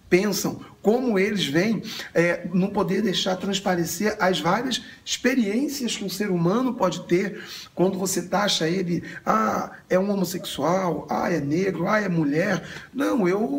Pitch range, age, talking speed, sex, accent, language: 165-215 Hz, 40-59, 145 wpm, male, Brazilian, Portuguese